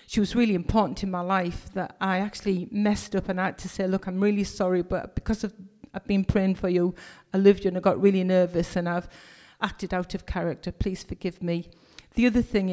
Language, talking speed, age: English, 230 wpm, 40-59